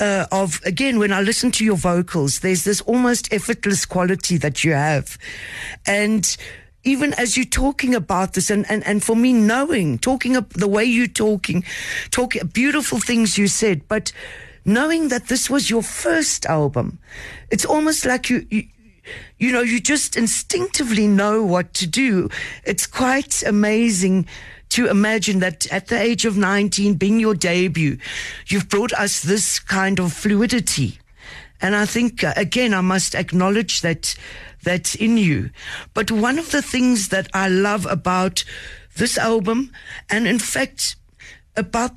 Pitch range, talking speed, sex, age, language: 190-245 Hz, 155 wpm, female, 50-69, English